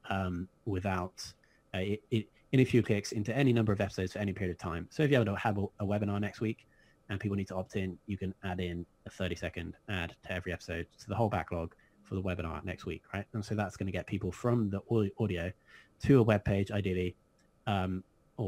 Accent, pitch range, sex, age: British, 90-110 Hz, male, 20-39